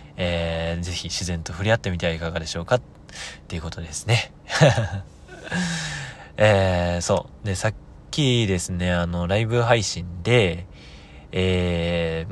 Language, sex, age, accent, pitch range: Japanese, male, 20-39, native, 80-105 Hz